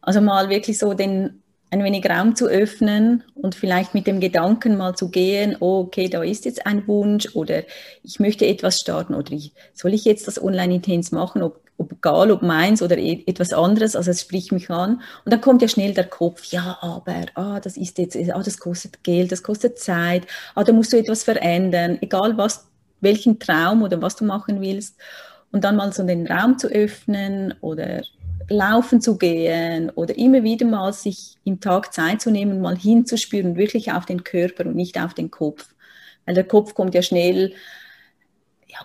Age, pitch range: 30-49, 180-215 Hz